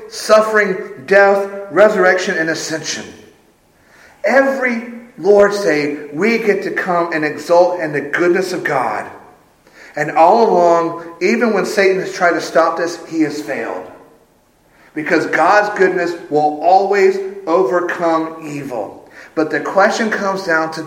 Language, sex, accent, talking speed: English, male, American, 130 wpm